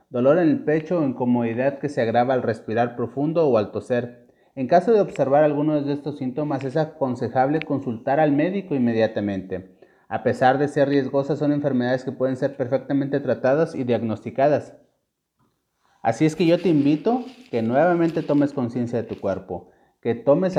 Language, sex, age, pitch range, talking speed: Spanish, male, 30-49, 125-155 Hz, 170 wpm